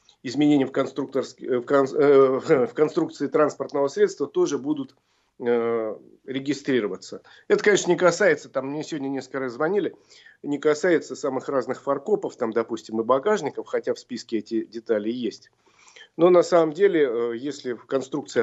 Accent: native